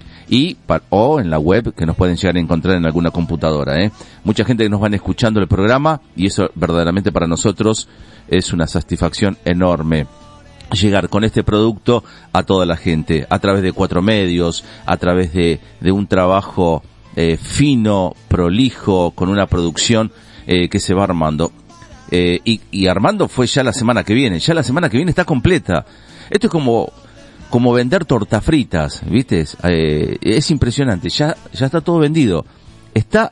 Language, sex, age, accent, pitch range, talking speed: Spanish, male, 40-59, Argentinian, 85-115 Hz, 175 wpm